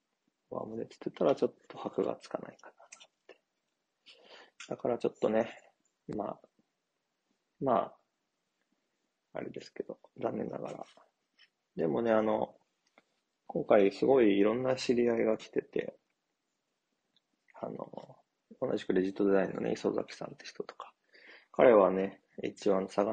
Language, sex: Japanese, male